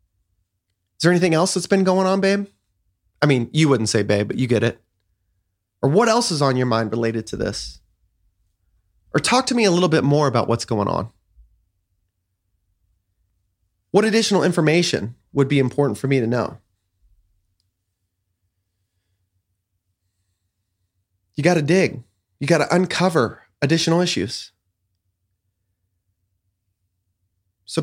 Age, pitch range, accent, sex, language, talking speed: 30-49, 95-145 Hz, American, male, English, 135 wpm